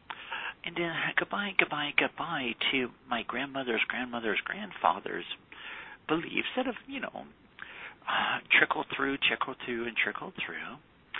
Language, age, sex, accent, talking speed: English, 50-69, male, American, 125 wpm